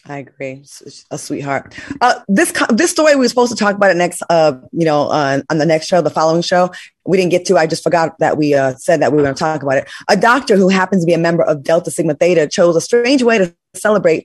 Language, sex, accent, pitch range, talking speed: English, female, American, 160-235 Hz, 270 wpm